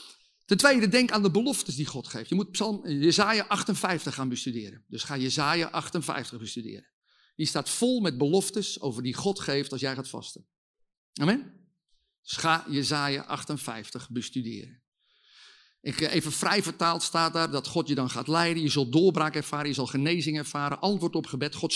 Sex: male